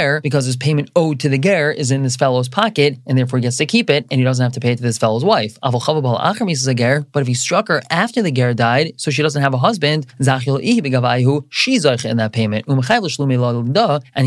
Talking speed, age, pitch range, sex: 210 wpm, 20-39, 130-165 Hz, male